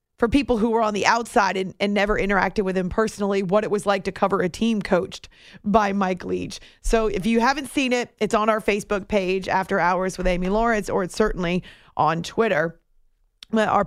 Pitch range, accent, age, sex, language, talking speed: 190-225 Hz, American, 30-49, female, English, 210 wpm